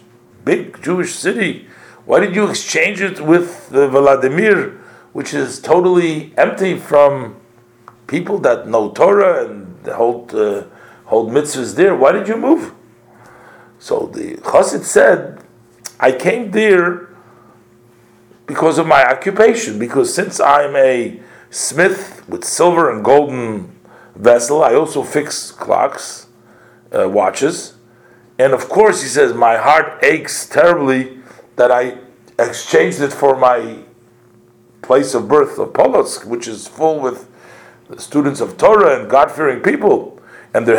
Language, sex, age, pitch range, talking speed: English, male, 50-69, 120-175 Hz, 130 wpm